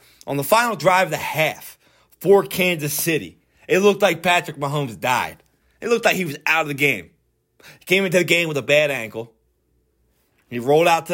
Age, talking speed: 20-39, 205 wpm